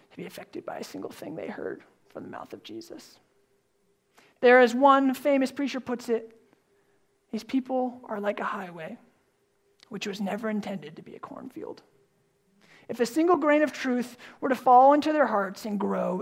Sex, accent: male, American